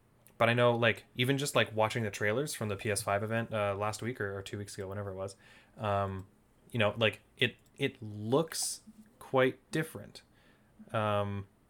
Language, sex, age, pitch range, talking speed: English, male, 20-39, 105-120 Hz, 180 wpm